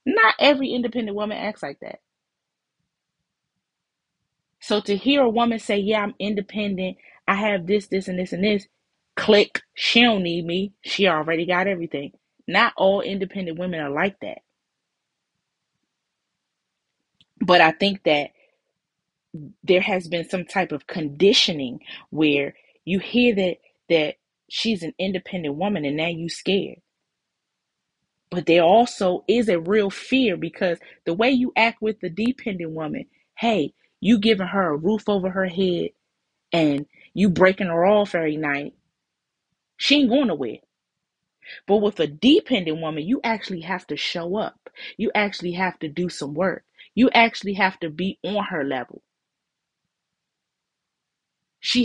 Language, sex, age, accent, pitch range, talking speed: English, female, 20-39, American, 180-235 Hz, 145 wpm